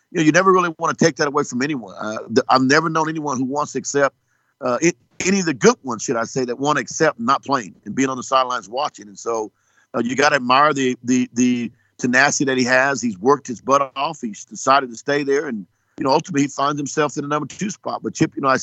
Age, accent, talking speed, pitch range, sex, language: 50-69, American, 265 wpm, 125-155 Hz, male, English